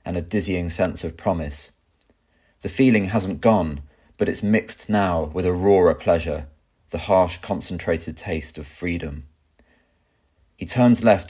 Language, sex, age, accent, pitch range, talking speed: English, male, 30-49, British, 80-100 Hz, 145 wpm